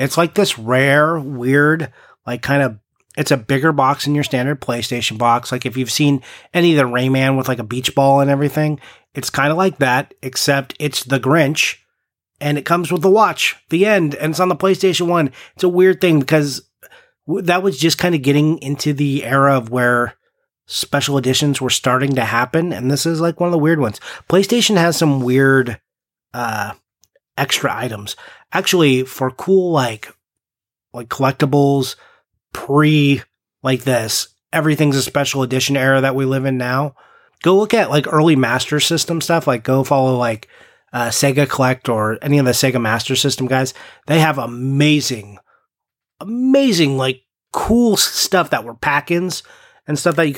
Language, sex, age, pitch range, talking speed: English, male, 30-49, 130-160 Hz, 180 wpm